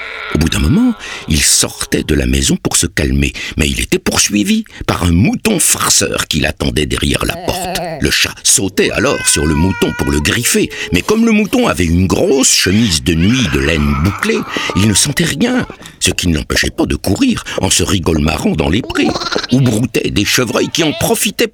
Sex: male